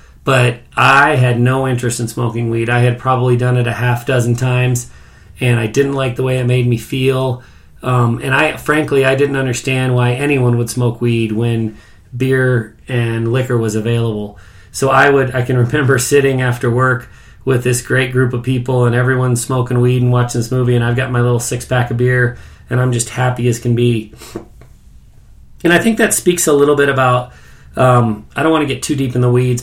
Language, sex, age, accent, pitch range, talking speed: English, male, 30-49, American, 120-135 Hz, 210 wpm